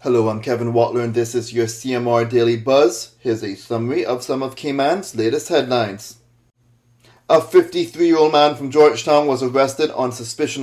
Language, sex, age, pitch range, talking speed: English, male, 30-49, 120-150 Hz, 165 wpm